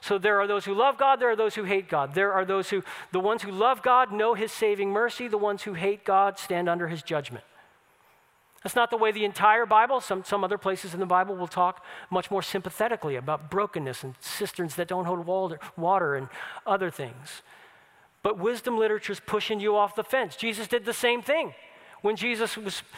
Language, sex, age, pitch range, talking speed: English, male, 40-59, 180-220 Hz, 215 wpm